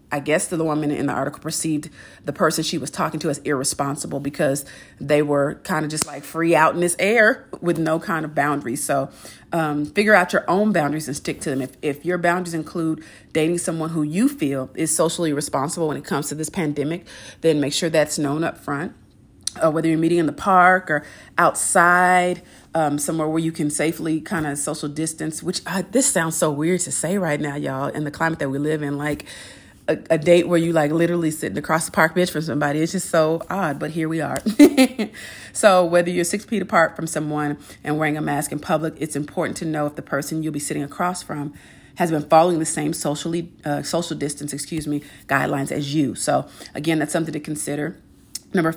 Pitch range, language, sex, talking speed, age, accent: 150-170 Hz, English, female, 215 wpm, 40-59, American